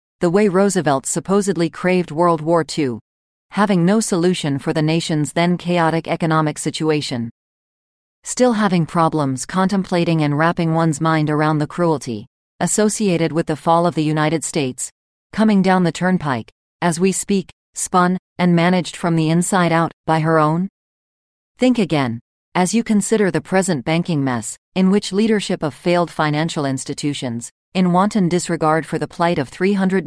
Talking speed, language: 155 wpm, English